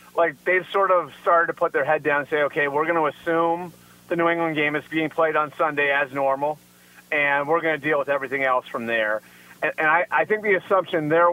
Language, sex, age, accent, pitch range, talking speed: English, male, 30-49, American, 145-170 Hz, 245 wpm